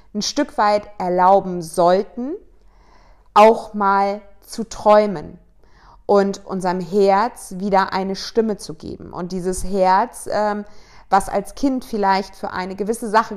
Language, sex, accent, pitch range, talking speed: German, female, German, 190-215 Hz, 125 wpm